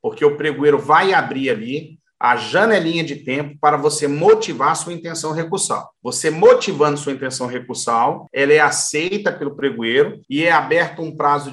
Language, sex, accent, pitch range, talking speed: Portuguese, male, Brazilian, 155-210 Hz, 160 wpm